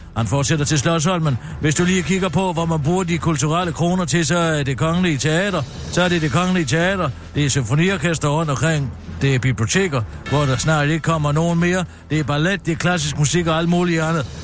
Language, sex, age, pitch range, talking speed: Danish, male, 60-79, 135-180 Hz, 220 wpm